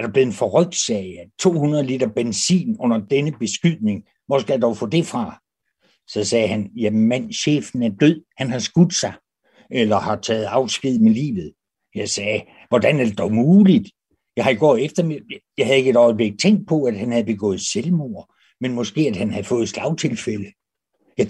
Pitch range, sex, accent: 120-170 Hz, male, native